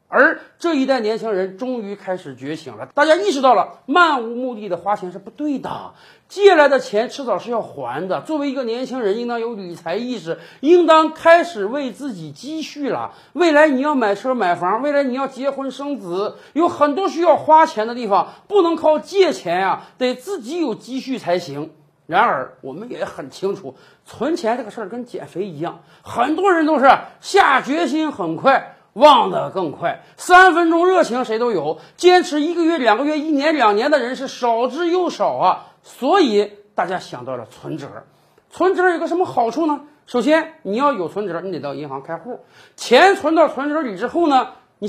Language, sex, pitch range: Chinese, male, 215-315 Hz